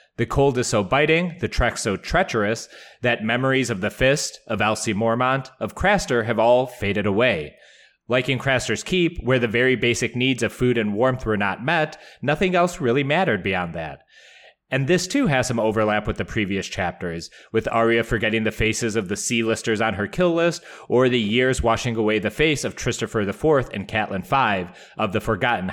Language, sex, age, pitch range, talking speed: English, male, 30-49, 105-135 Hz, 195 wpm